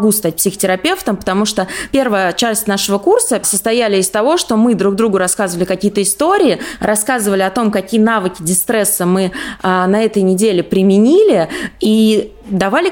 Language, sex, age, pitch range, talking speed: Russian, female, 20-39, 195-245 Hz, 145 wpm